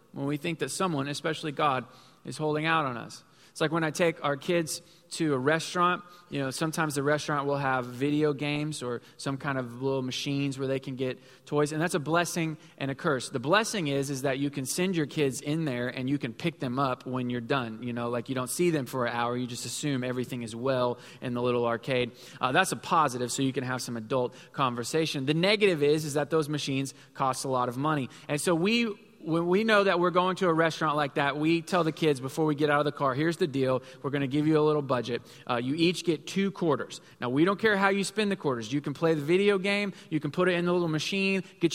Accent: American